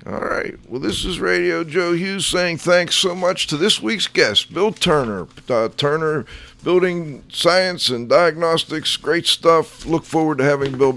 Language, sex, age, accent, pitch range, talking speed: English, male, 50-69, American, 115-145 Hz, 170 wpm